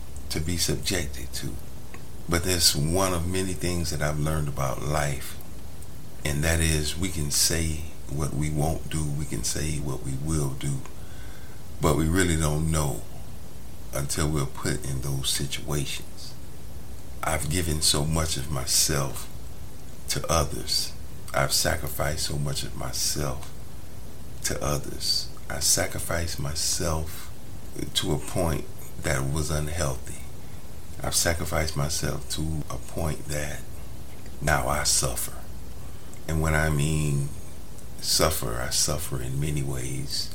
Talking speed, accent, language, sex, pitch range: 130 wpm, American, English, male, 70-80 Hz